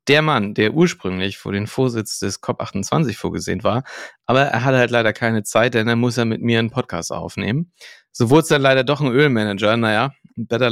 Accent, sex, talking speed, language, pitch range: German, male, 205 wpm, German, 105-130 Hz